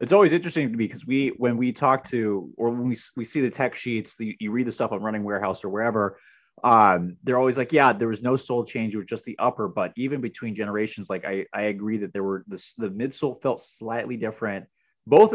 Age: 30-49